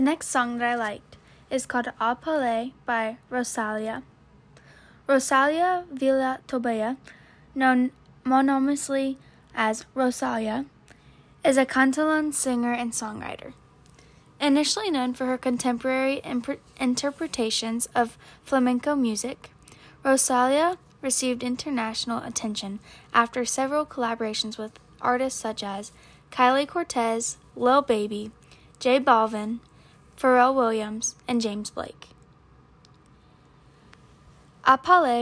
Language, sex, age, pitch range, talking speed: English, female, 10-29, 225-265 Hz, 100 wpm